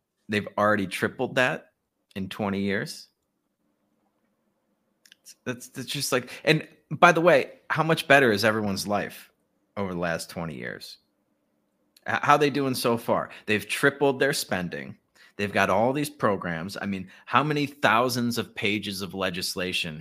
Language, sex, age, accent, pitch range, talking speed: English, male, 30-49, American, 95-115 Hz, 150 wpm